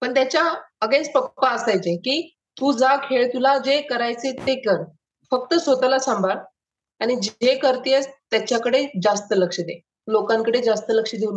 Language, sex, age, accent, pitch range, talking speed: Marathi, female, 20-39, native, 210-255 Hz, 150 wpm